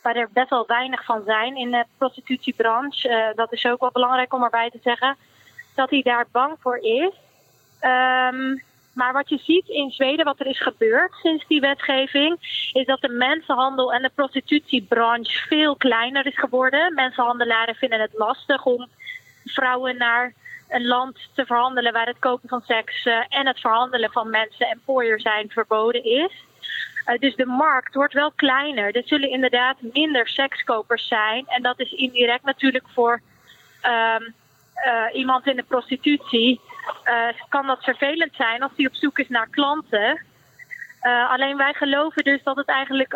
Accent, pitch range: Dutch, 240-275 Hz